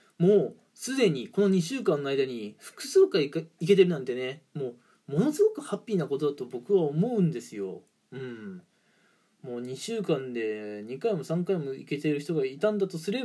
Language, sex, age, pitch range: Japanese, male, 20-39, 155-225 Hz